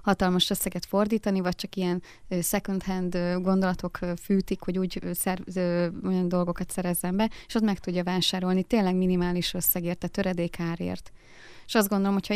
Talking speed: 145 wpm